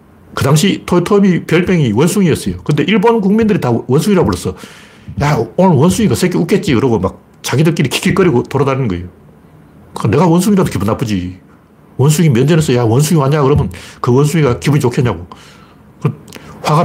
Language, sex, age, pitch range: Korean, male, 60-79, 120-185 Hz